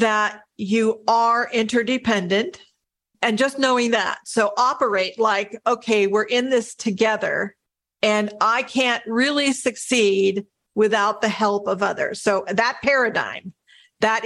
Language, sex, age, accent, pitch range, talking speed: English, female, 50-69, American, 210-250 Hz, 125 wpm